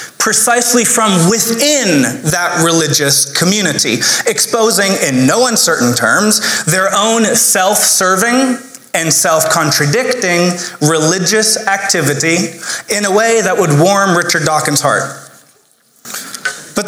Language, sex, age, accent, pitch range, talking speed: English, male, 20-39, American, 155-205 Hz, 100 wpm